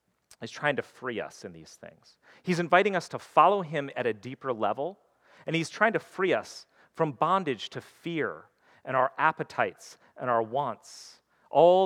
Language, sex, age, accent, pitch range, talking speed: English, male, 40-59, American, 125-165 Hz, 175 wpm